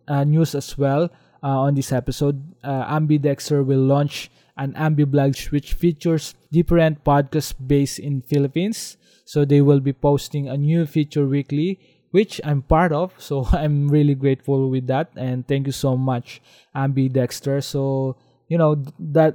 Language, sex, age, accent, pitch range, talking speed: English, male, 20-39, Filipino, 130-155 Hz, 160 wpm